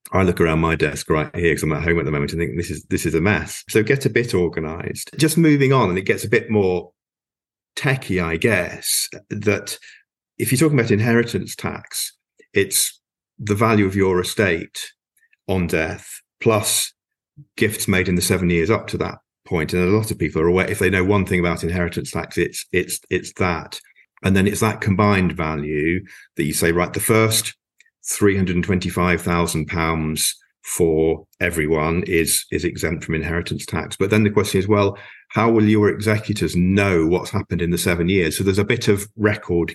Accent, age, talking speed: British, 50-69, 200 wpm